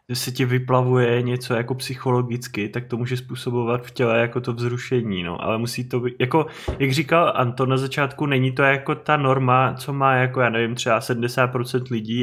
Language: Czech